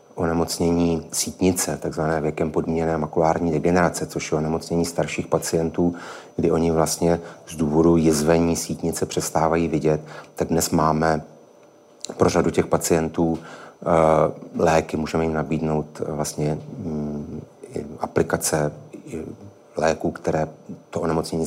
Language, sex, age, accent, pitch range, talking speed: Czech, male, 30-49, native, 80-85 Hz, 110 wpm